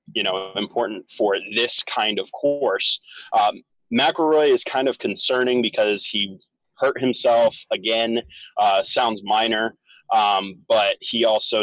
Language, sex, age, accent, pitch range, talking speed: English, male, 20-39, American, 110-150 Hz, 135 wpm